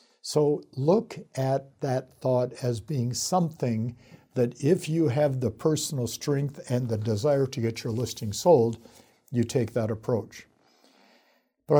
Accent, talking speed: American, 140 wpm